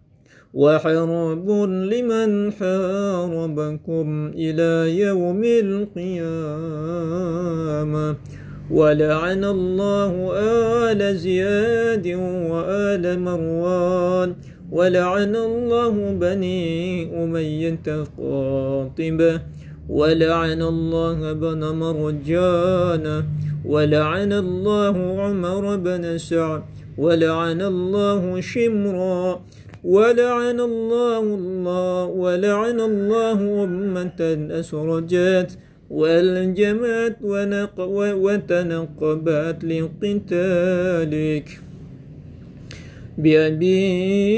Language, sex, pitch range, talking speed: Indonesian, male, 165-205 Hz, 60 wpm